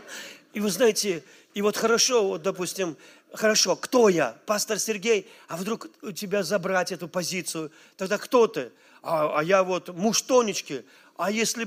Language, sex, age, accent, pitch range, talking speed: Russian, male, 40-59, native, 165-210 Hz, 160 wpm